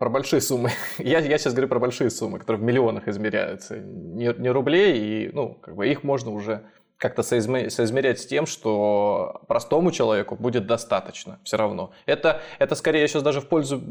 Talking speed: 175 wpm